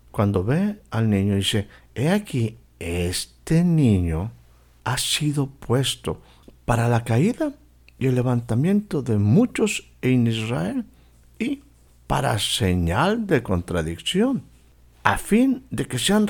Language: Spanish